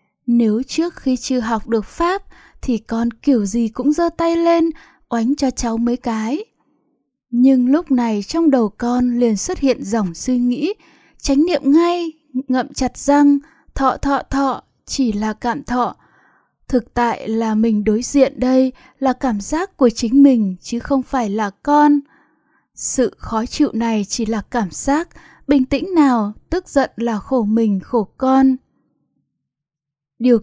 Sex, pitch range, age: female, 230-280 Hz, 10-29